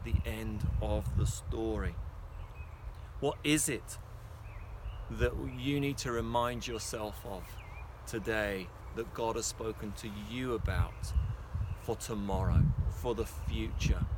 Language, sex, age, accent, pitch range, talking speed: English, male, 30-49, British, 100-120 Hz, 120 wpm